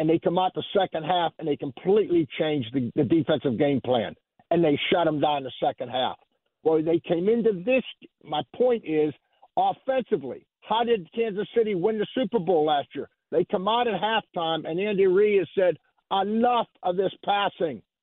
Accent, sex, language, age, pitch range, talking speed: American, male, English, 50-69, 170-230 Hz, 185 wpm